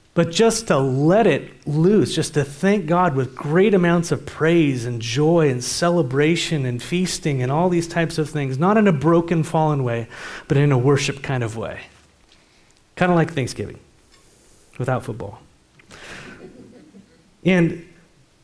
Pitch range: 125-170 Hz